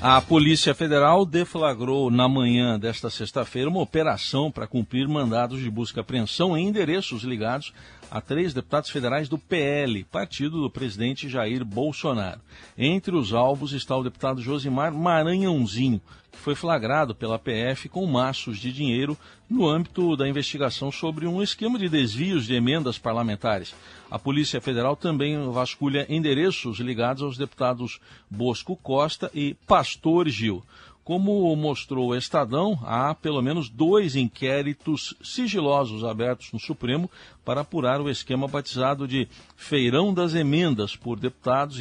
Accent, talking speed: Brazilian, 140 wpm